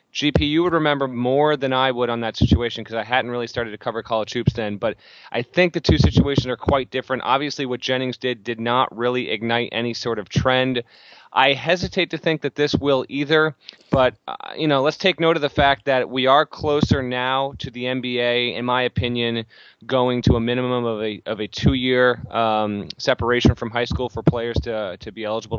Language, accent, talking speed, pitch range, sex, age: English, American, 215 wpm, 115-135 Hz, male, 30-49